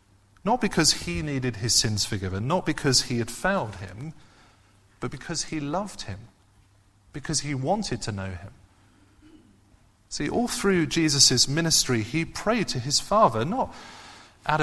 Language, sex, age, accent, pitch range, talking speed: English, male, 30-49, British, 105-155 Hz, 150 wpm